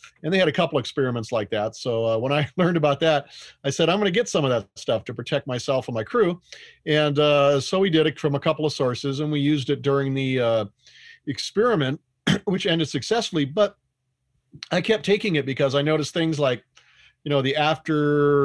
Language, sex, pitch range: English, male, 125-155 Hz